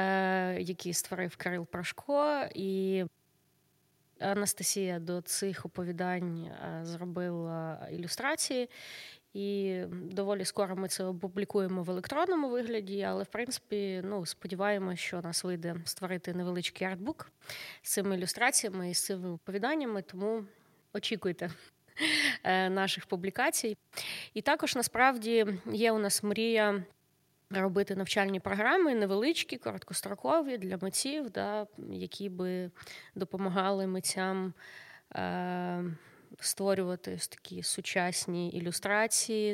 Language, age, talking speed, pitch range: Ukrainian, 20-39, 105 wpm, 180-210 Hz